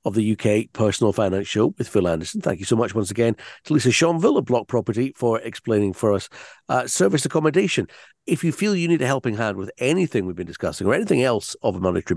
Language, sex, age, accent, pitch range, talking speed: English, male, 50-69, British, 100-130 Hz, 230 wpm